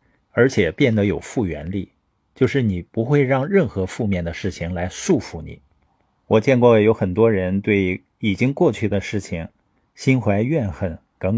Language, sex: Chinese, male